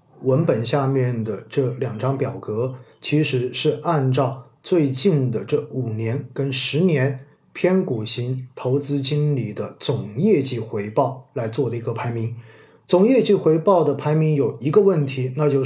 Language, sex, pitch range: Chinese, male, 130-150 Hz